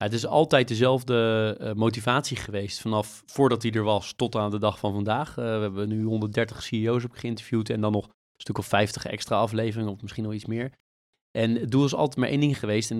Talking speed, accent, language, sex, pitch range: 225 wpm, Dutch, Dutch, male, 105-130 Hz